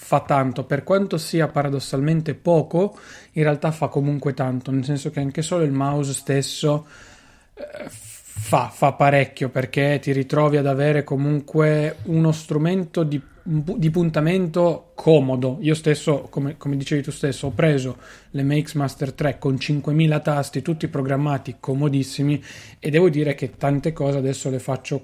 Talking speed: 150 wpm